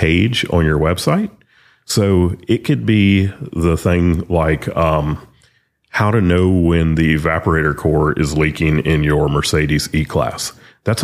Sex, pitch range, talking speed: male, 80-105 Hz, 145 wpm